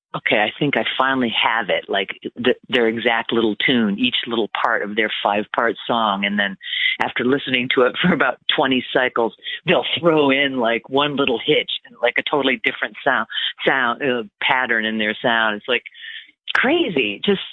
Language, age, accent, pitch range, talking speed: English, 40-59, American, 115-170 Hz, 185 wpm